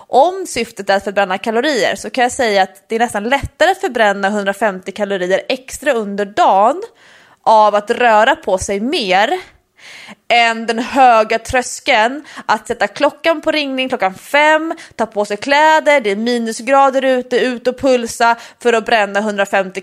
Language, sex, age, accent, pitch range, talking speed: English, female, 20-39, Swedish, 200-270 Hz, 165 wpm